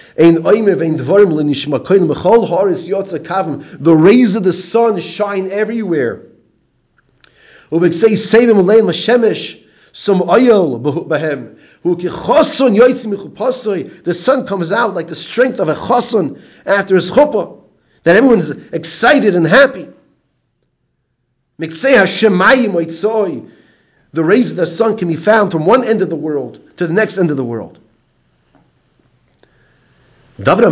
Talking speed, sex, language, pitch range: 90 wpm, male, English, 150-215 Hz